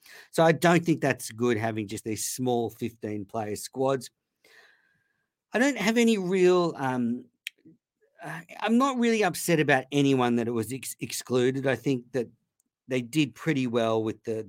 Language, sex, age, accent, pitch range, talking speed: English, male, 50-69, Australian, 110-140 Hz, 160 wpm